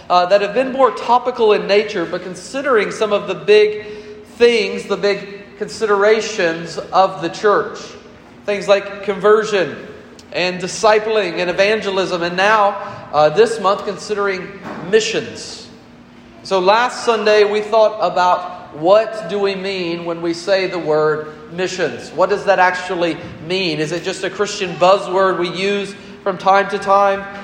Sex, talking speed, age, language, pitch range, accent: male, 150 wpm, 40-59, English, 170-205 Hz, American